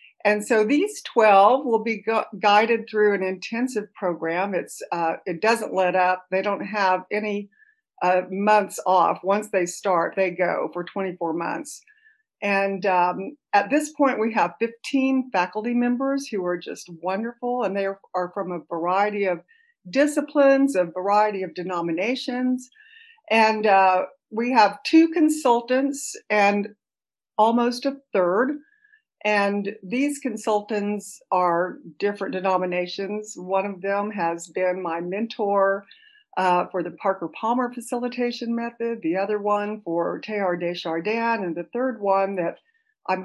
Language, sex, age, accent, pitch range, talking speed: English, female, 50-69, American, 185-245 Hz, 140 wpm